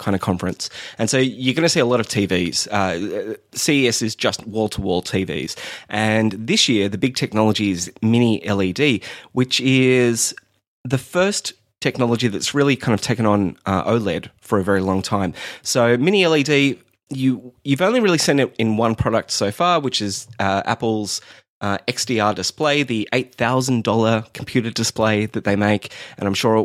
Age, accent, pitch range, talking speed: 20-39, Australian, 100-125 Hz, 175 wpm